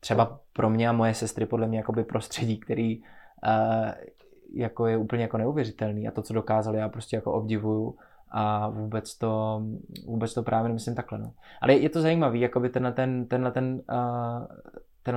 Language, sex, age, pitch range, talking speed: Czech, male, 20-39, 115-125 Hz, 160 wpm